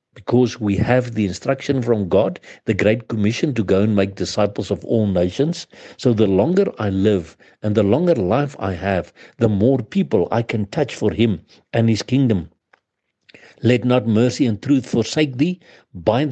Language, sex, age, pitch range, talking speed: English, male, 60-79, 105-130 Hz, 175 wpm